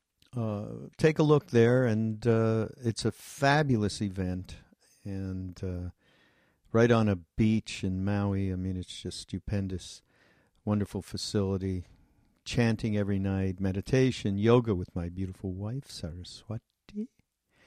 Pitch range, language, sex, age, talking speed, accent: 95-120 Hz, English, male, 50-69, 120 wpm, American